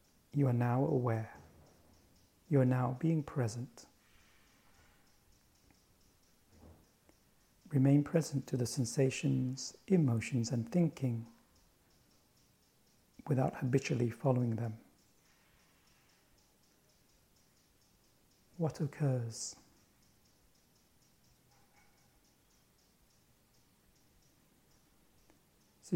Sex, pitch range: male, 120-145 Hz